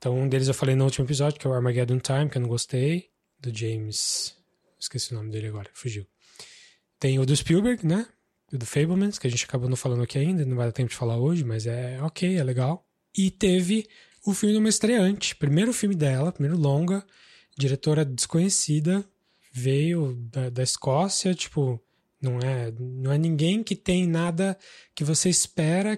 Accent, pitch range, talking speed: Brazilian, 130-175 Hz, 195 wpm